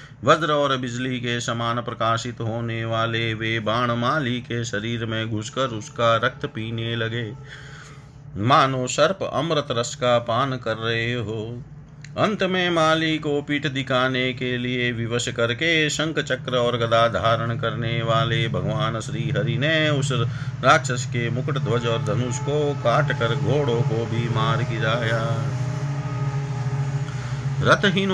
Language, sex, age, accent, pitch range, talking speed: Hindi, male, 50-69, native, 115-145 Hz, 130 wpm